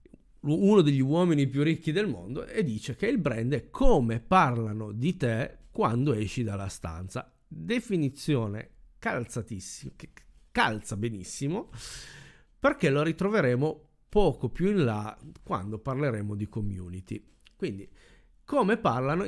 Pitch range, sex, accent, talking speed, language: 105-145 Hz, male, native, 120 wpm, Italian